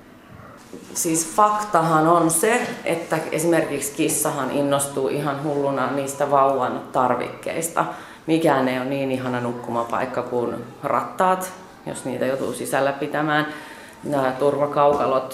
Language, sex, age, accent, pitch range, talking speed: Finnish, female, 30-49, native, 130-155 Hz, 115 wpm